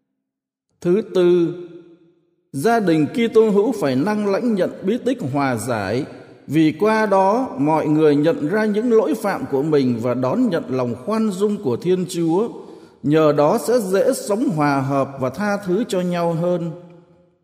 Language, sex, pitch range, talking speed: Vietnamese, male, 145-215 Hz, 170 wpm